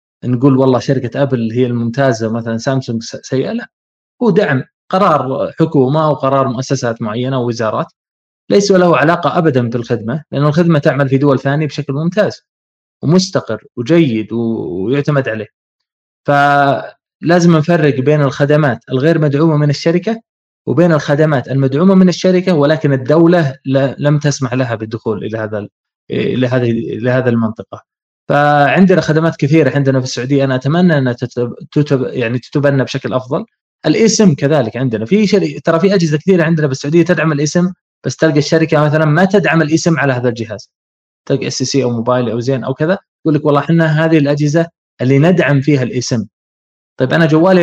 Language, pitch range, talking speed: Arabic, 125-160 Hz, 160 wpm